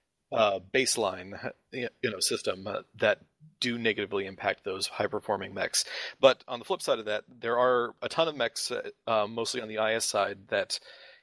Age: 30-49